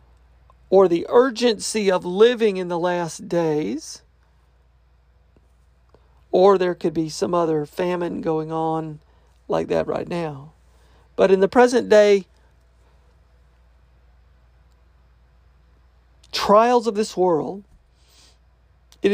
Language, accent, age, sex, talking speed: English, American, 40-59, male, 100 wpm